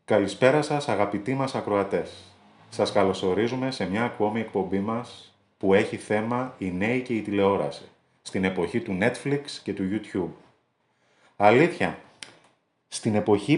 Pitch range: 100-135 Hz